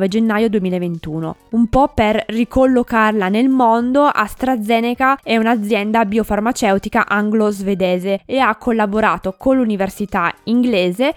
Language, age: Italian, 20-39